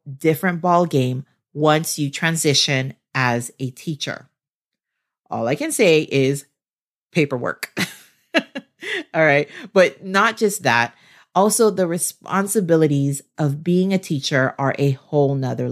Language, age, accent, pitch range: English, 40-59, American, 140-195 Hz